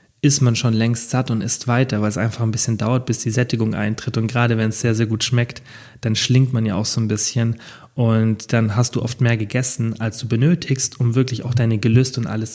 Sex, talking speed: male, 245 wpm